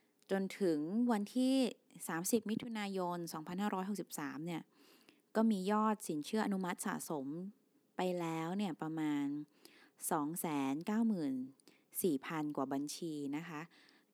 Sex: female